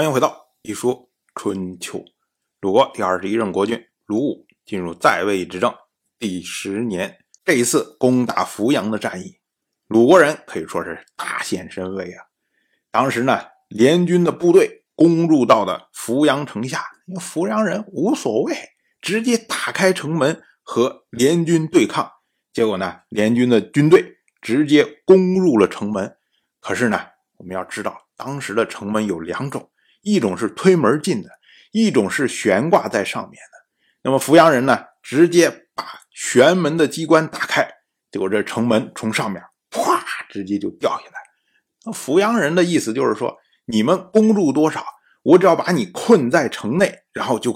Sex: male